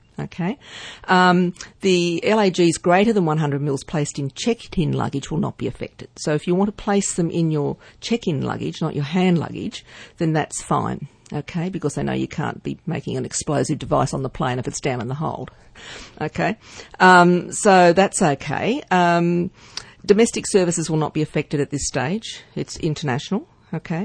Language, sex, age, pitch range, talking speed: English, female, 50-69, 140-175 Hz, 180 wpm